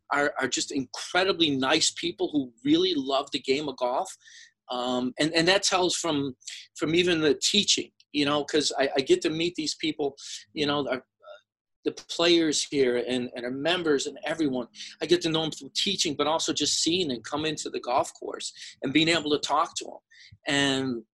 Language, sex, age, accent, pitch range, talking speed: English, male, 40-59, American, 140-200 Hz, 200 wpm